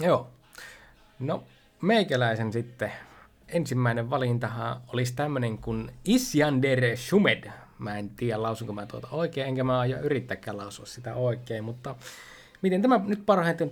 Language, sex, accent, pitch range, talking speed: Finnish, male, native, 120-165 Hz, 130 wpm